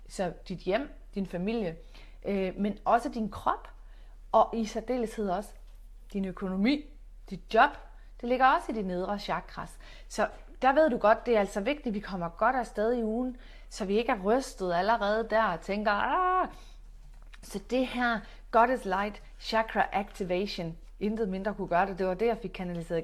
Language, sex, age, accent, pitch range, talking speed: Danish, female, 30-49, native, 190-230 Hz, 175 wpm